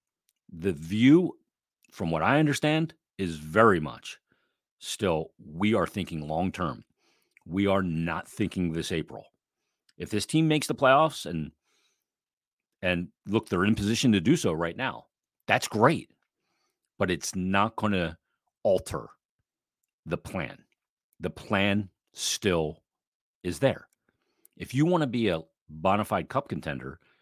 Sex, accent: male, American